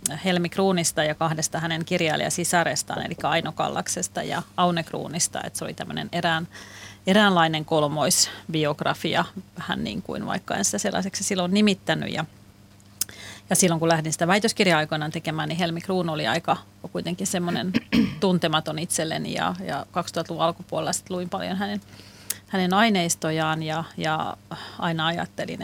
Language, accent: Finnish, native